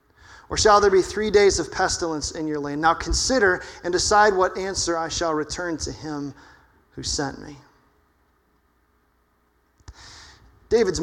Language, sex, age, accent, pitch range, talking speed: English, male, 30-49, American, 140-190 Hz, 140 wpm